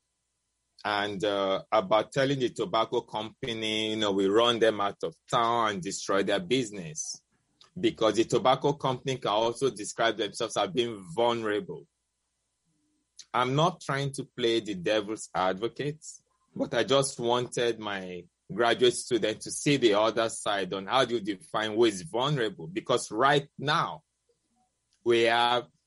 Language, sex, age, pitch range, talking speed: English, male, 20-39, 110-150 Hz, 145 wpm